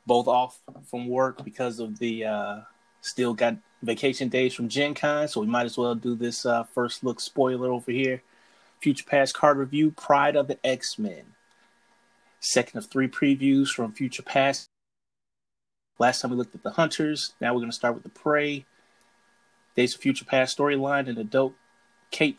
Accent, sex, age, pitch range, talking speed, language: American, male, 30-49, 120-145 Hz, 175 wpm, English